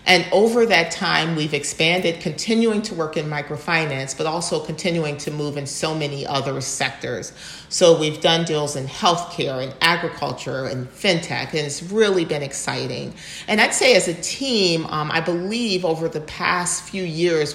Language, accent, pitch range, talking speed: English, American, 145-175 Hz, 170 wpm